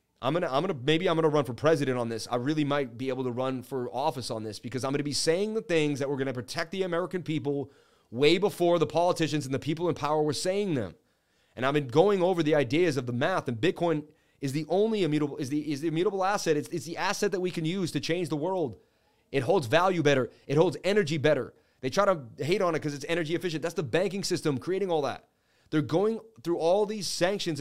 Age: 30-49